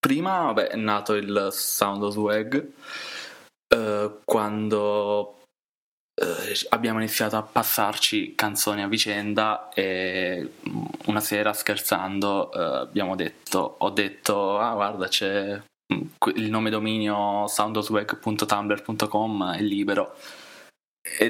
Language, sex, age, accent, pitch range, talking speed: Italian, male, 20-39, native, 100-110 Hz, 105 wpm